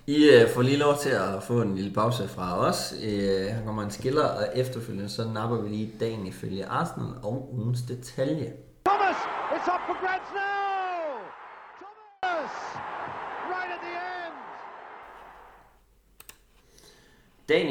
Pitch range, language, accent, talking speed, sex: 105-130 Hz, Danish, native, 100 wpm, male